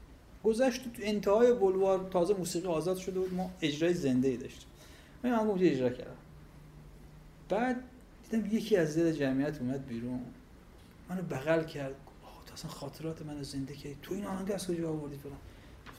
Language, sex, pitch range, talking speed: Persian, male, 140-195 Hz, 155 wpm